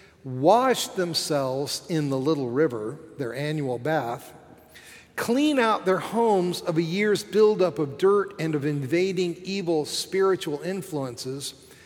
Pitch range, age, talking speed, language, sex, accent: 140-185 Hz, 50-69, 125 wpm, English, male, American